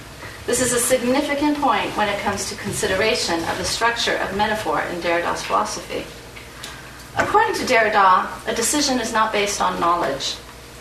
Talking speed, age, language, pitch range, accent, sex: 155 wpm, 40-59, English, 165-245 Hz, American, female